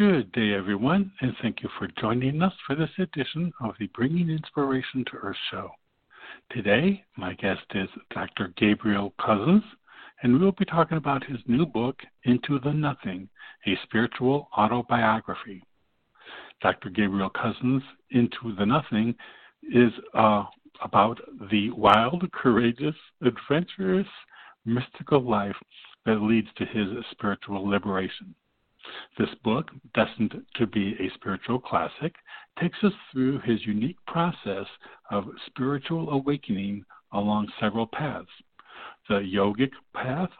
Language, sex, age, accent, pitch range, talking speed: English, male, 60-79, American, 110-155 Hz, 125 wpm